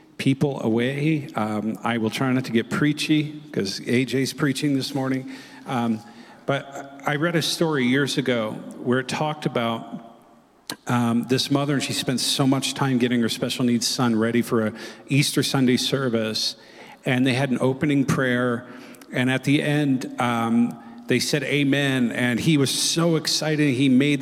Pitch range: 120-145 Hz